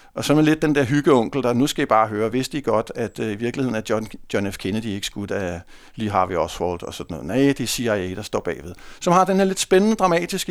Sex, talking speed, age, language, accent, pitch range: male, 280 wpm, 60-79, English, Danish, 130-175 Hz